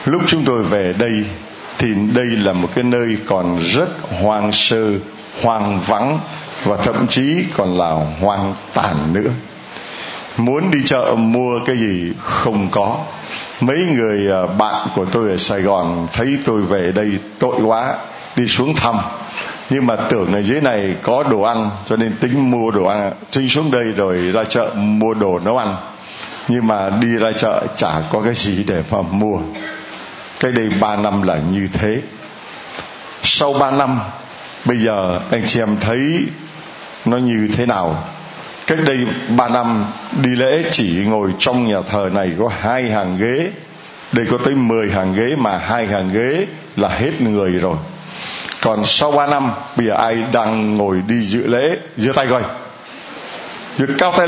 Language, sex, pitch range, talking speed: Vietnamese, male, 105-140 Hz, 170 wpm